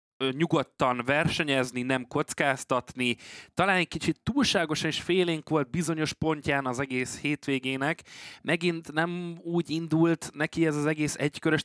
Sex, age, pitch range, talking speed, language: male, 20-39, 120-155 Hz, 130 wpm, Hungarian